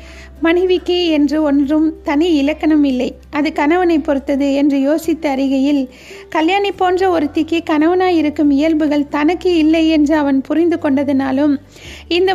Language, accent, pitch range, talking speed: Tamil, native, 295-345 Hz, 110 wpm